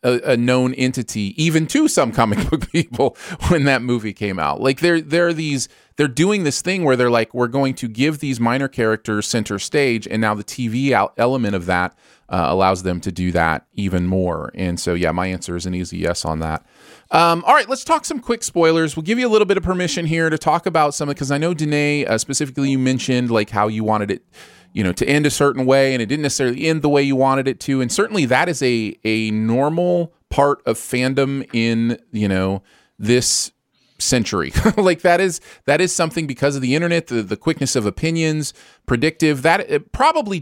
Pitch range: 110-160 Hz